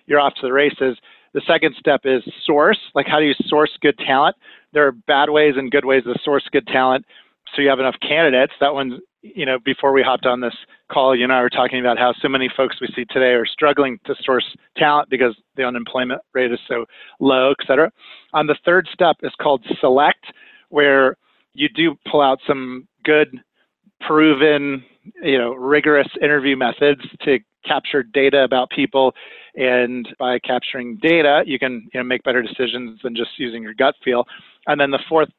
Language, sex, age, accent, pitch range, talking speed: English, male, 40-59, American, 125-145 Hz, 195 wpm